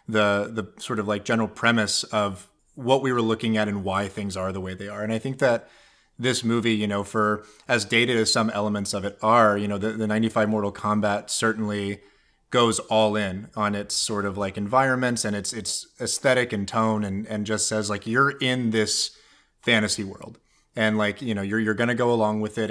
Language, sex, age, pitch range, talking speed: English, male, 30-49, 100-115 Hz, 220 wpm